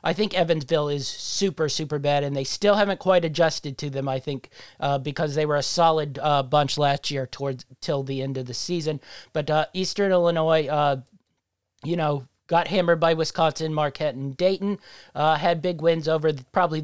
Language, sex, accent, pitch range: English, male, American, 140-170 Hz